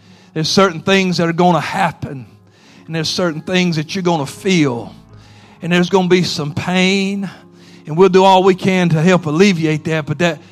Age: 50-69